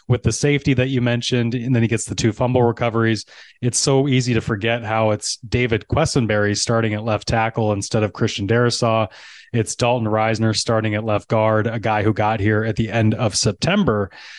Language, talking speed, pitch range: English, 200 wpm, 110-135 Hz